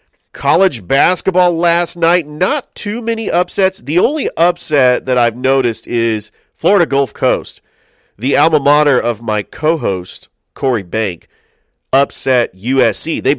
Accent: American